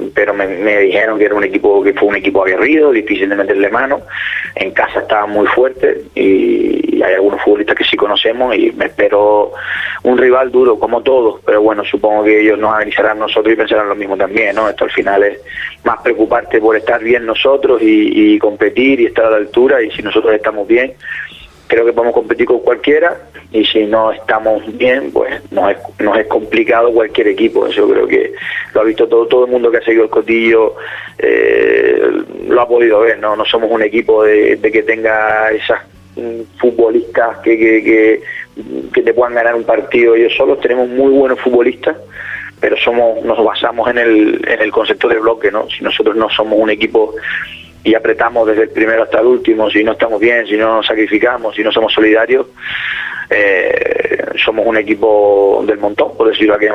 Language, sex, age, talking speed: Spanish, male, 30-49, 200 wpm